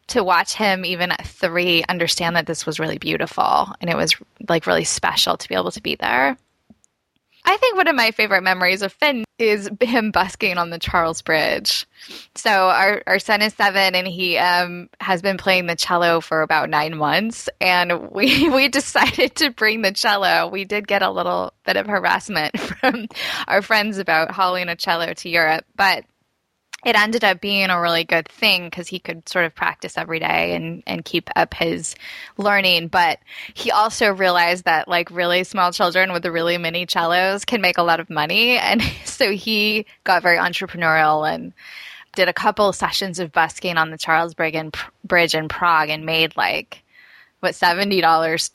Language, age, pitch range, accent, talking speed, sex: English, 10-29, 165-205 Hz, American, 185 wpm, female